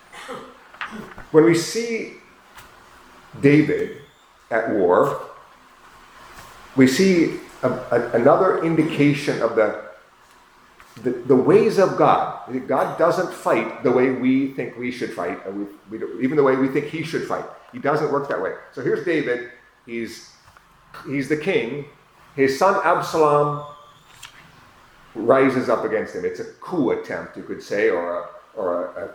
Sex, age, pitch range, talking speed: male, 40-59, 125-200 Hz, 150 wpm